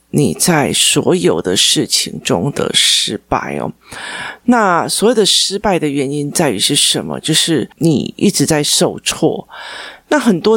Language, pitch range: Chinese, 145-175 Hz